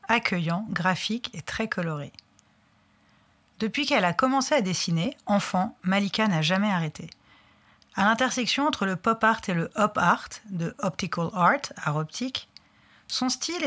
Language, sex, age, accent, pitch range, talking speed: French, female, 30-49, French, 180-240 Hz, 145 wpm